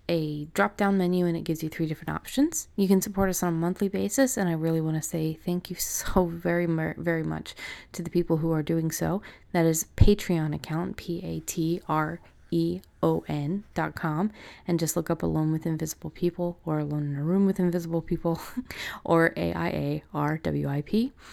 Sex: female